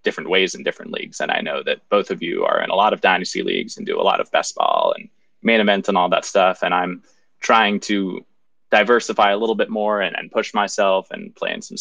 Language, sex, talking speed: English, male, 255 wpm